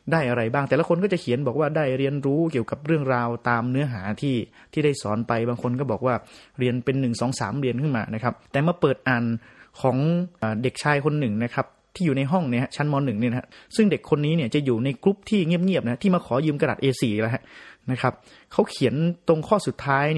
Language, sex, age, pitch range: Thai, male, 30-49, 120-155 Hz